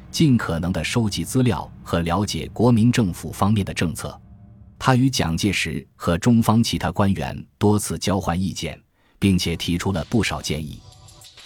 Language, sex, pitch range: Chinese, male, 85-115 Hz